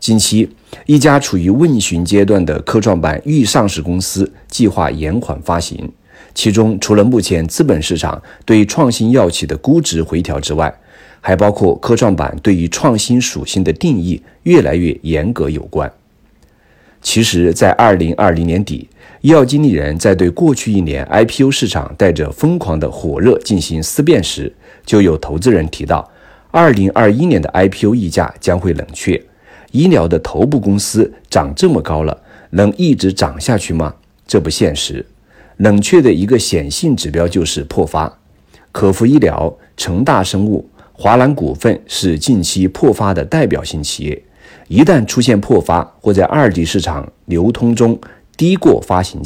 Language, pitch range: Chinese, 85-115 Hz